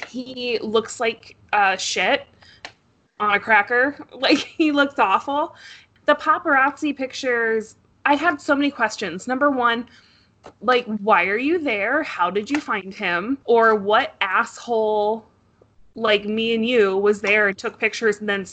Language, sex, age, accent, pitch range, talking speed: English, female, 20-39, American, 220-290 Hz, 150 wpm